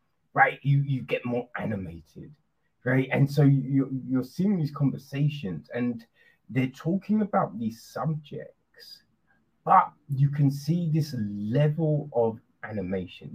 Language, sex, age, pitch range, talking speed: English, male, 30-49, 130-160 Hz, 120 wpm